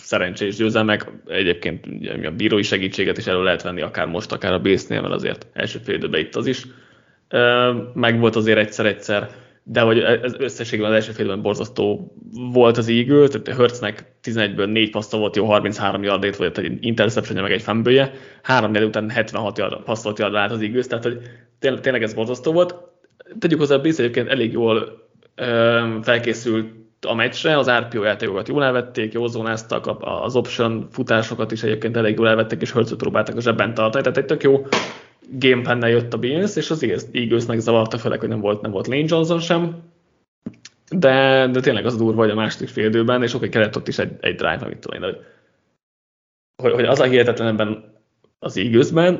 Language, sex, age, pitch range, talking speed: Hungarian, male, 20-39, 110-130 Hz, 175 wpm